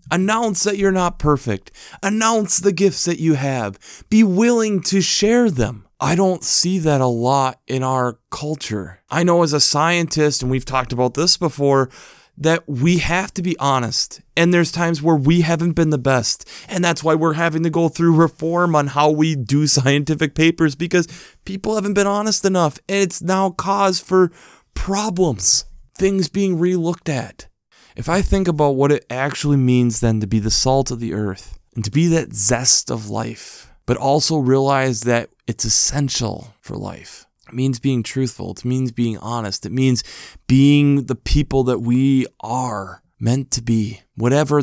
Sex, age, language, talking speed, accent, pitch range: male, 30-49, English, 175 wpm, American, 120-165 Hz